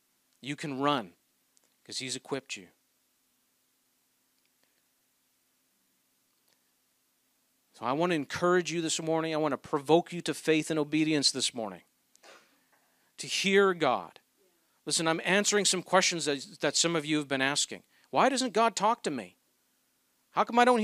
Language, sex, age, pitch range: English, male, 40-59, 150-205 Hz